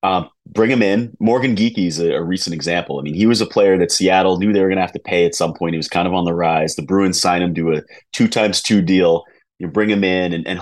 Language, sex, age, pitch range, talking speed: English, male, 30-49, 85-105 Hz, 300 wpm